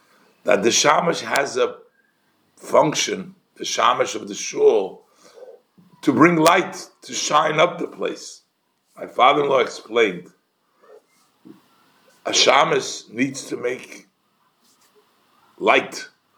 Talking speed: 110 wpm